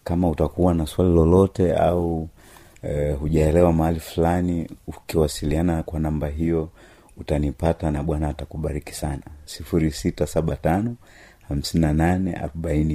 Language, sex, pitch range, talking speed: Swahili, male, 75-95 Hz, 95 wpm